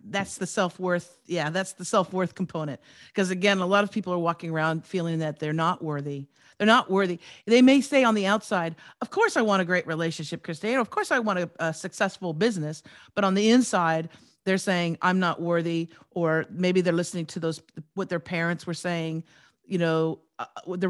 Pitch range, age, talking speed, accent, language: 165-195 Hz, 50-69, 205 wpm, American, English